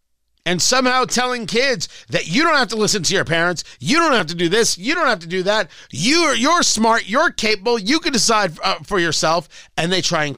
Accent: American